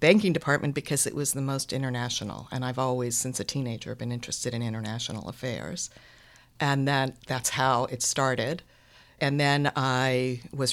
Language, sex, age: English, female, 50-69